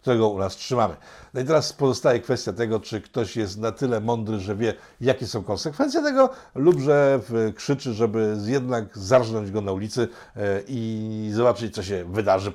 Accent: native